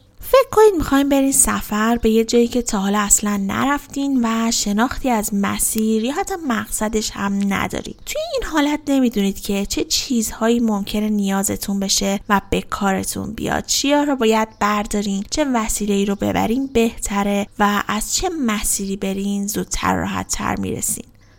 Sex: female